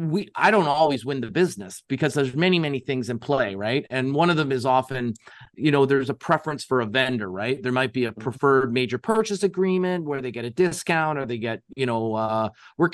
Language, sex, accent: English, male, American